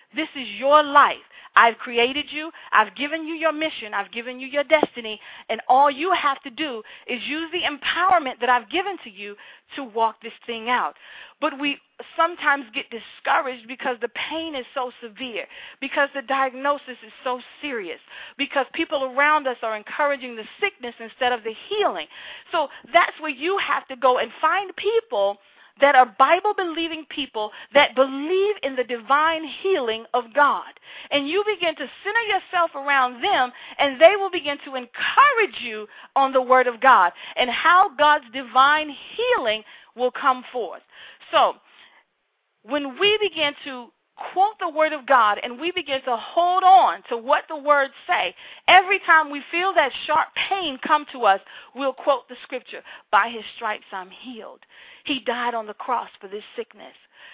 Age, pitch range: 40-59, 240-320 Hz